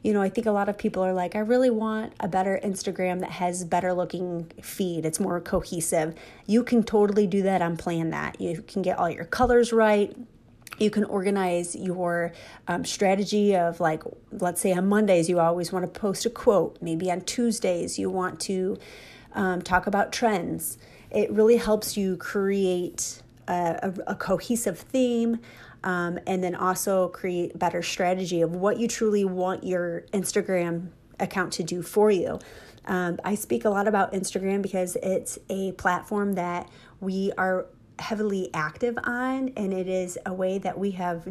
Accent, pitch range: American, 175-205 Hz